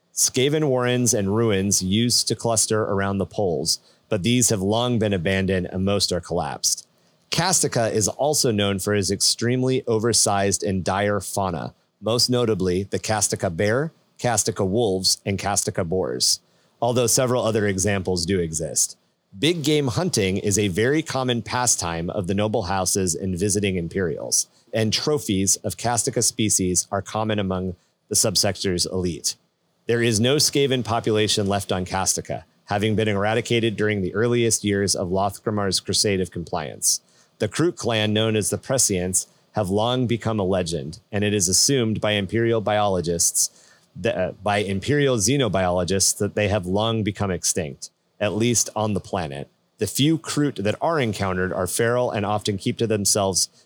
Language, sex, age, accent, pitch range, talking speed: English, male, 30-49, American, 95-115 Hz, 160 wpm